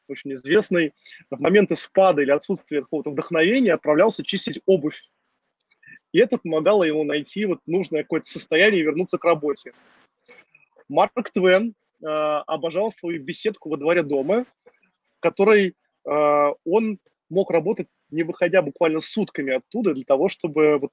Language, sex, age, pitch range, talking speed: Russian, male, 20-39, 155-200 Hz, 135 wpm